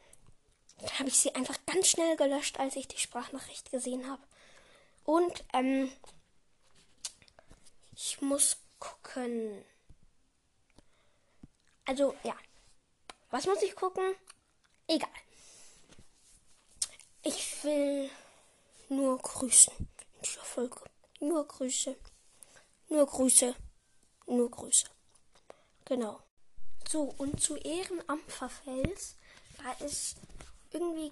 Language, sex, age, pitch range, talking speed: German, female, 10-29, 255-310 Hz, 85 wpm